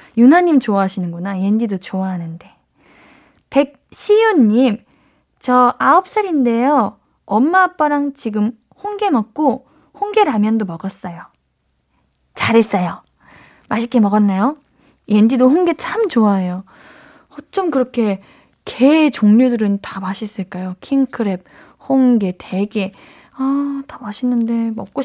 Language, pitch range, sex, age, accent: Korean, 210-290 Hz, female, 10-29, native